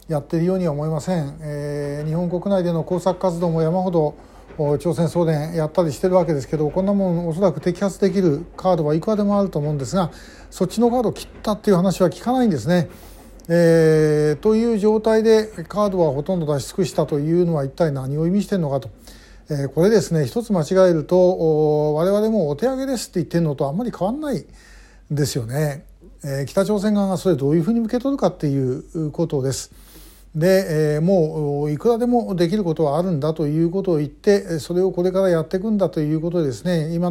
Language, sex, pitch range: Japanese, male, 150-195 Hz